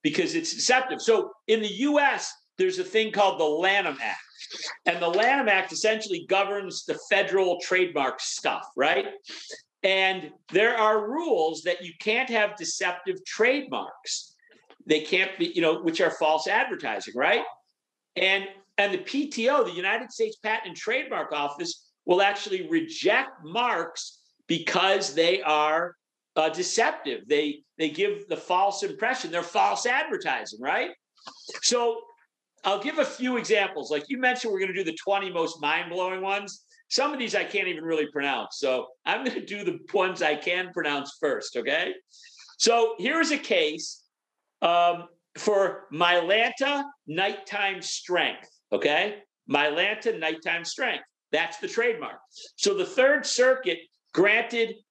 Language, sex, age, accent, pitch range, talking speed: English, male, 50-69, American, 175-295 Hz, 145 wpm